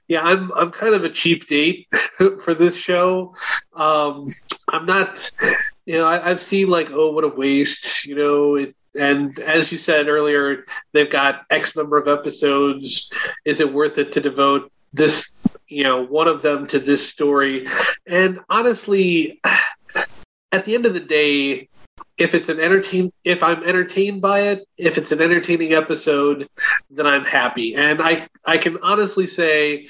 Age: 30-49